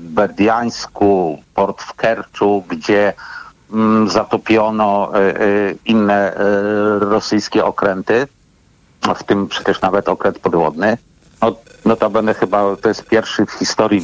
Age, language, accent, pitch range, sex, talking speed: 50-69, Polish, native, 100-110 Hz, male, 120 wpm